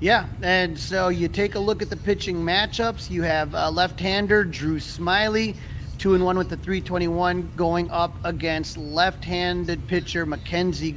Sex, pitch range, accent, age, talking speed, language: male, 165-185 Hz, American, 30-49, 150 wpm, English